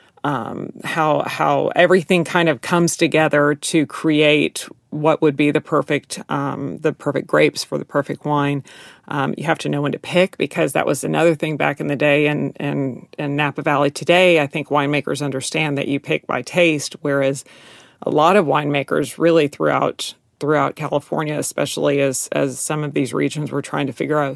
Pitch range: 145-170 Hz